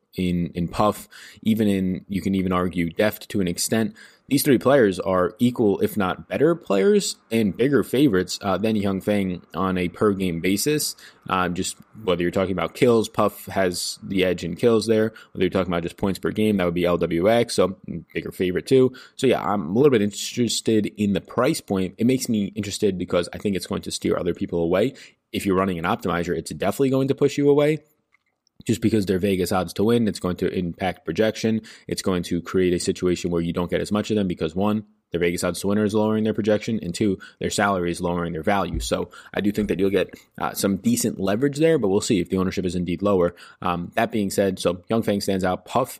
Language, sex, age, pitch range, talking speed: English, male, 20-39, 90-110 Hz, 230 wpm